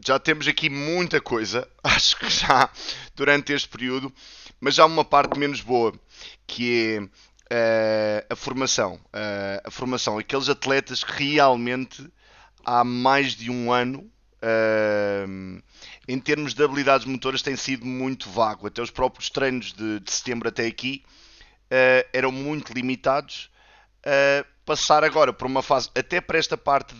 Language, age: Portuguese, 20-39